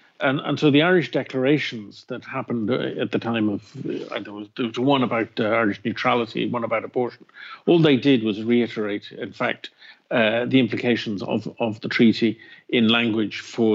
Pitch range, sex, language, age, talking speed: 115-145 Hz, male, English, 50-69, 175 wpm